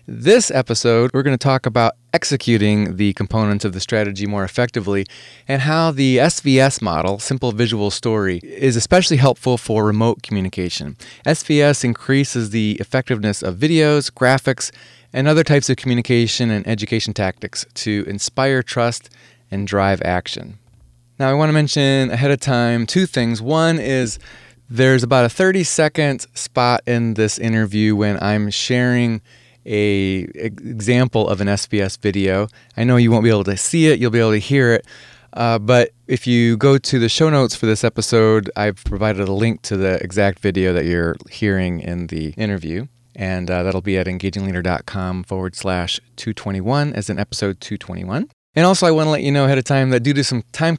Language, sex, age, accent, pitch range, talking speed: English, male, 20-39, American, 105-135 Hz, 175 wpm